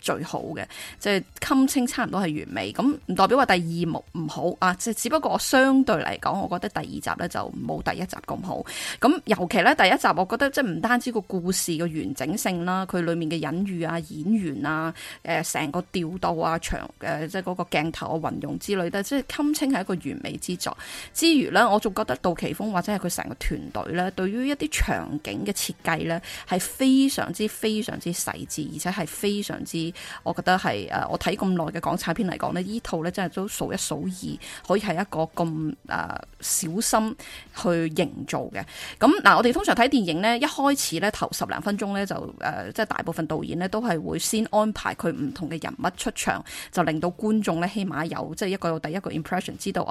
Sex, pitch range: female, 170-220 Hz